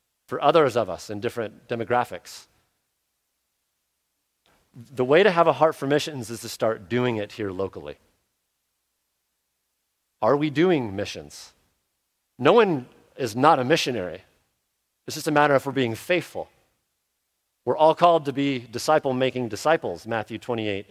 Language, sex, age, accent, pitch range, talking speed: English, male, 40-59, American, 105-140 Hz, 140 wpm